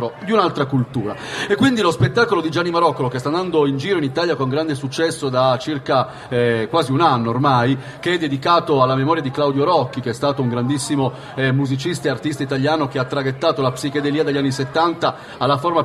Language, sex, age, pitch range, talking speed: Italian, male, 40-59, 135-170 Hz, 210 wpm